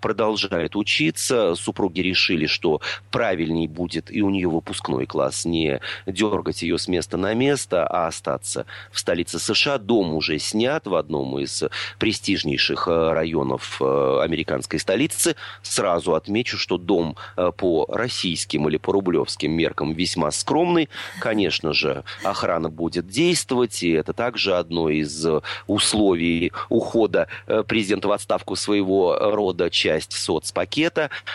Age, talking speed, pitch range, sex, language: 30-49, 125 wpm, 80-105 Hz, male, Russian